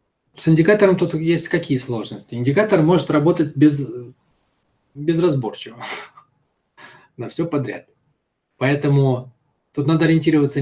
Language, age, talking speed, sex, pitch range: Russian, 20-39, 100 wpm, male, 125-165 Hz